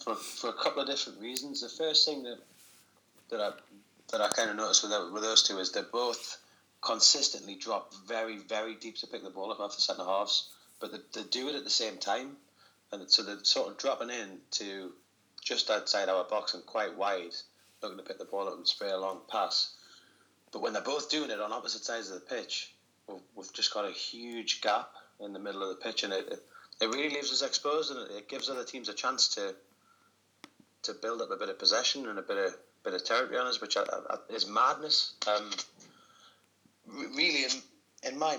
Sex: male